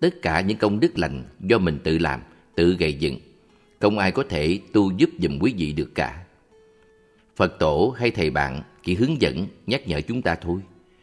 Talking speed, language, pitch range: 200 wpm, Vietnamese, 80-105 Hz